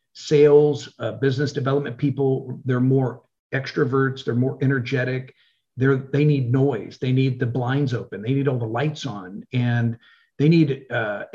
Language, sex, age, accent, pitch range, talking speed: English, male, 50-69, American, 125-145 Hz, 160 wpm